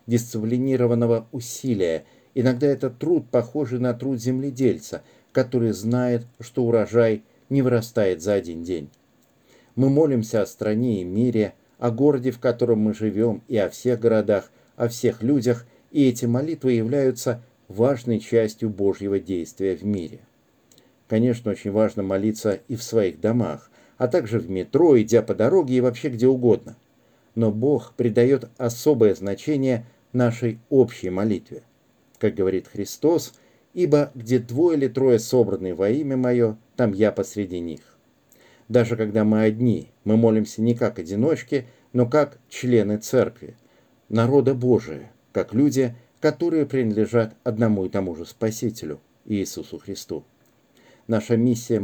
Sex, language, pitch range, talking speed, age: male, Russian, 110-125 Hz, 135 wpm, 50-69